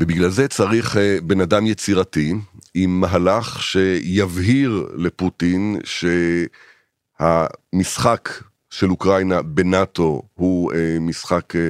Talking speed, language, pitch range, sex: 80 wpm, Hebrew, 85-110 Hz, male